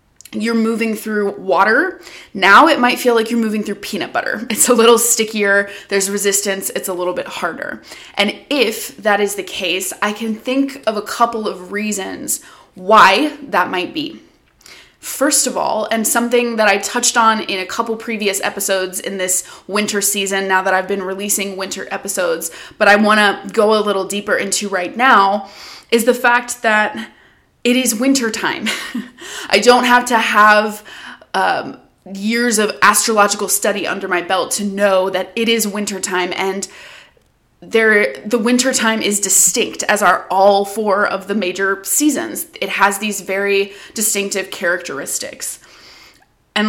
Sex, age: female, 20-39